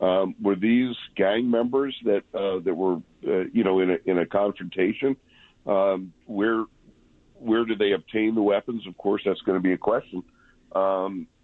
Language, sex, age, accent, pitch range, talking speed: English, male, 50-69, American, 90-110 Hz, 180 wpm